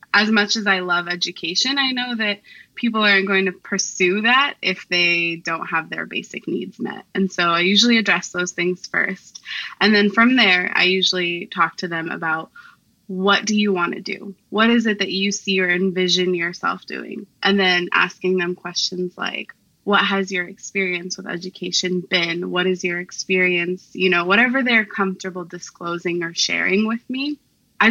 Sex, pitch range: female, 175-205 Hz